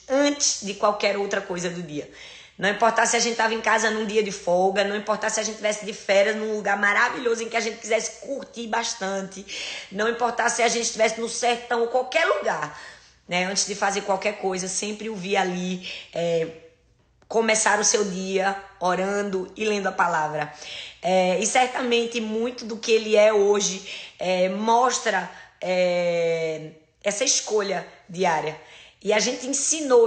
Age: 20-39